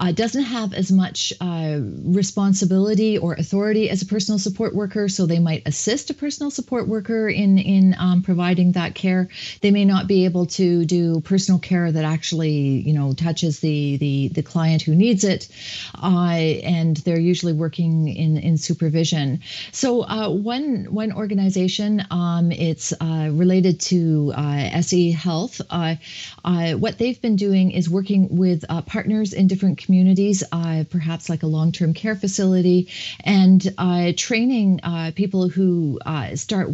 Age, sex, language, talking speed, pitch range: 40-59, female, English, 165 wpm, 160-195 Hz